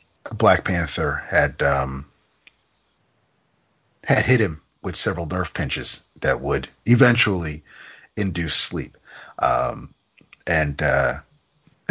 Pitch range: 90-125 Hz